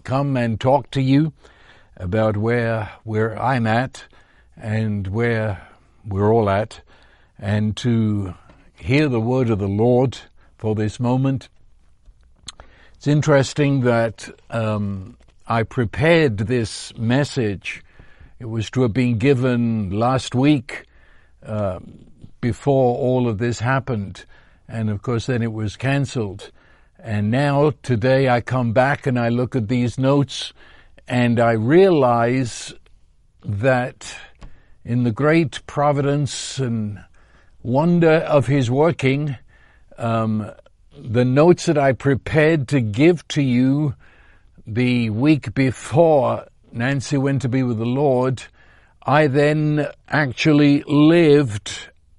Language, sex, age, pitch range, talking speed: English, male, 60-79, 110-140 Hz, 120 wpm